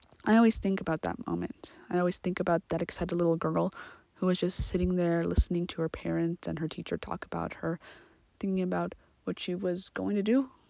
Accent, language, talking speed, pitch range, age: American, English, 210 wpm, 165-195 Hz, 20-39